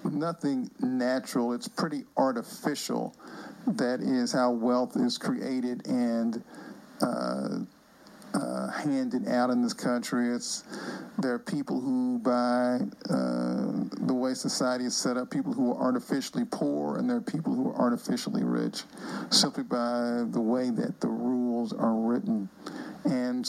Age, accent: 50-69, American